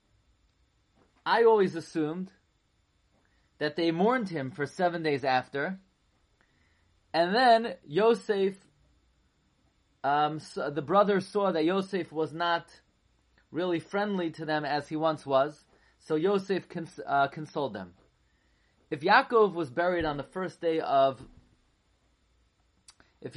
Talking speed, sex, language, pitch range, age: 120 wpm, male, English, 140-185 Hz, 30-49